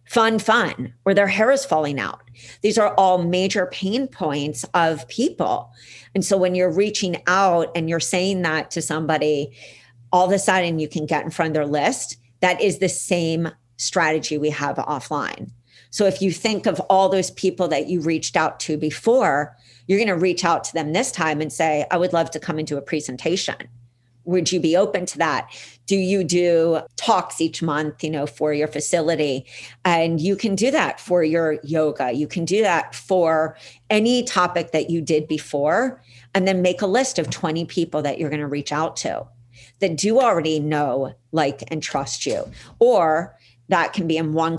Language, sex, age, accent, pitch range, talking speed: English, female, 40-59, American, 150-185 Hz, 195 wpm